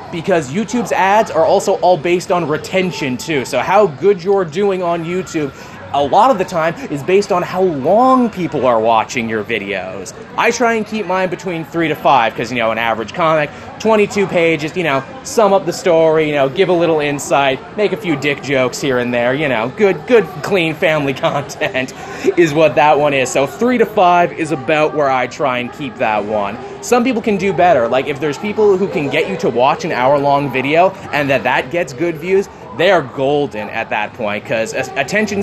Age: 20-39